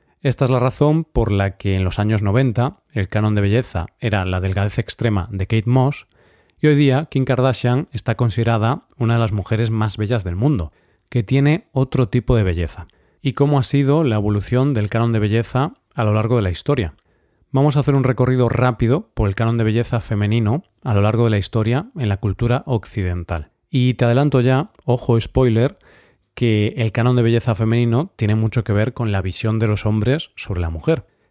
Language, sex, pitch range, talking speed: Spanish, male, 105-130 Hz, 205 wpm